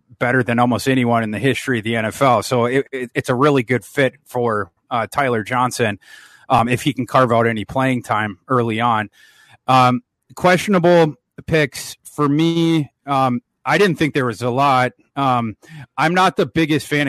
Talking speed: 185 wpm